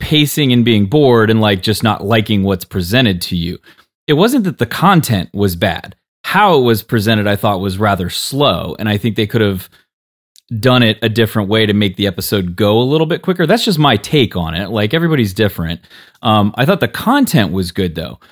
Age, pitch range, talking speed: 30-49, 100-125 Hz, 215 wpm